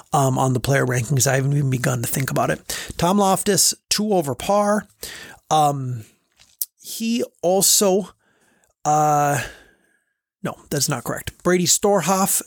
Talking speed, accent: 135 wpm, American